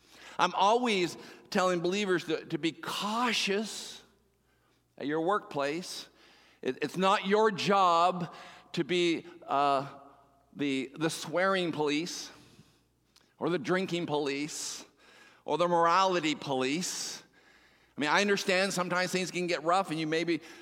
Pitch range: 150-200 Hz